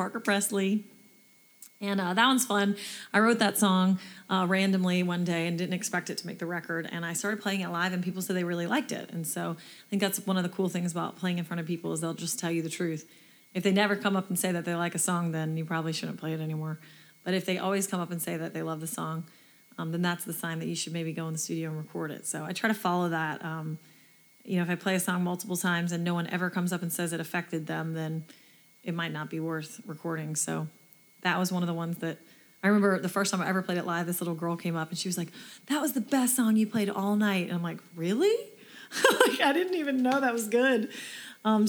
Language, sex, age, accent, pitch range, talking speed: English, female, 30-49, American, 165-195 Hz, 270 wpm